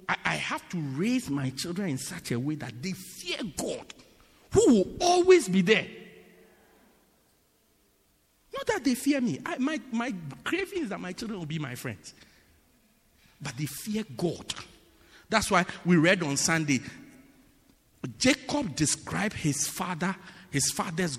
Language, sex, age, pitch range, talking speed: English, male, 50-69, 130-220 Hz, 145 wpm